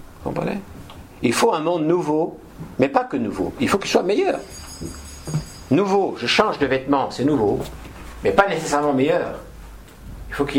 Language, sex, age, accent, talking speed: French, male, 60-79, French, 160 wpm